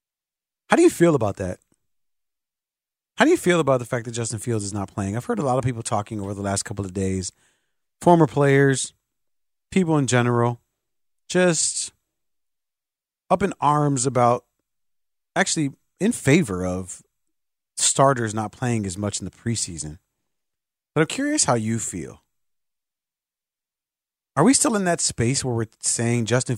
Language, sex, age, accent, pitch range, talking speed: English, male, 30-49, American, 100-150 Hz, 160 wpm